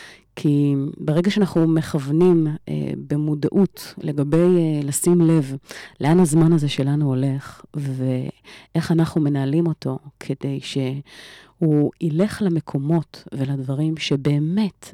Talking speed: 100 wpm